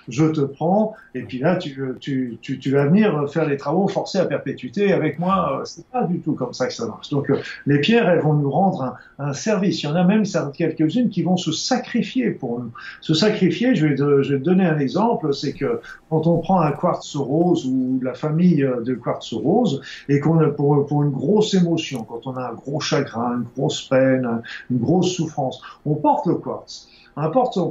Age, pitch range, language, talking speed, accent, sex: 50-69, 145-185 Hz, French, 225 wpm, French, male